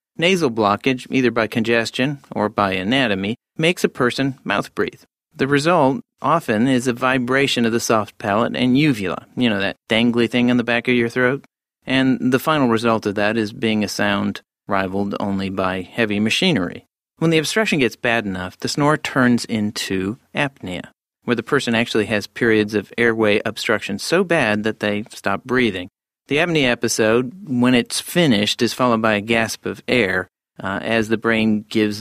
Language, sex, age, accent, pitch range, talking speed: English, male, 40-59, American, 105-130 Hz, 180 wpm